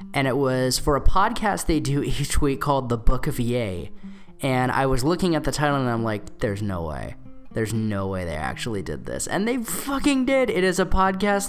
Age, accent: 10-29, American